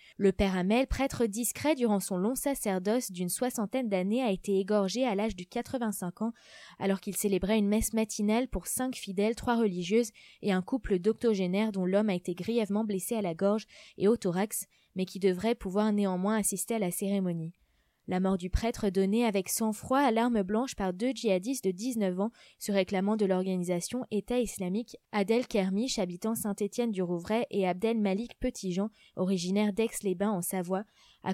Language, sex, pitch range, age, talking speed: French, female, 190-225 Hz, 20-39, 175 wpm